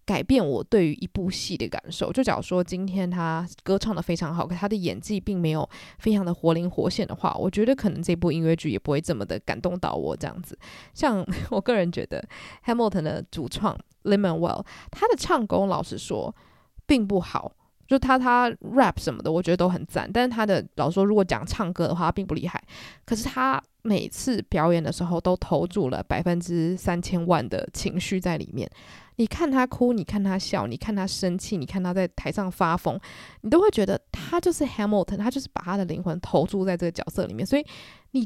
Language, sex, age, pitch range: Chinese, female, 20-39, 175-225 Hz